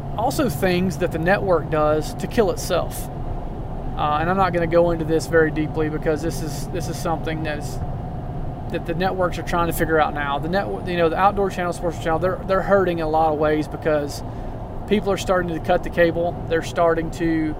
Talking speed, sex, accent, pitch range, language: 220 wpm, male, American, 150-175 Hz, English